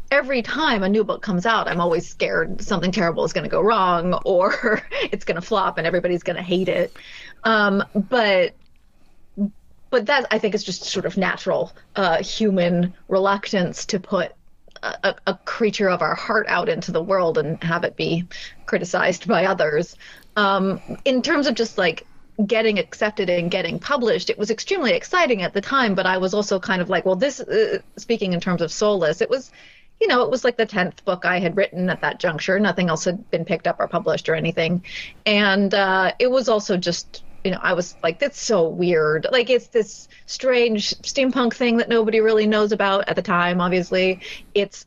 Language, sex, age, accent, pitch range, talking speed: English, female, 30-49, American, 180-225 Hz, 200 wpm